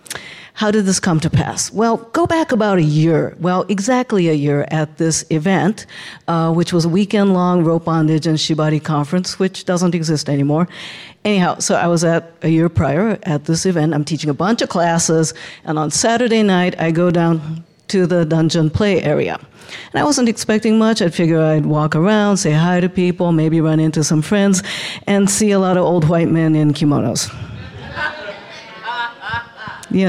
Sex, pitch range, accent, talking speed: female, 155-190 Hz, American, 185 wpm